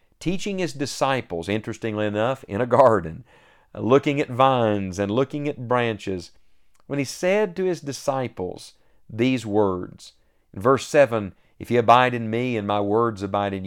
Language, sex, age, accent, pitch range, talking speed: English, male, 50-69, American, 100-135 Hz, 160 wpm